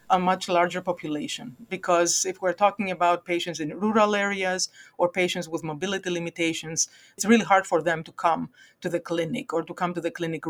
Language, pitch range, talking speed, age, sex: English, 170-200 Hz, 195 wpm, 30-49, female